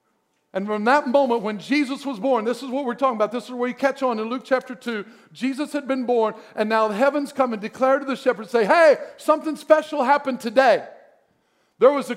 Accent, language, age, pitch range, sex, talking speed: American, English, 50-69, 210-280 Hz, male, 230 wpm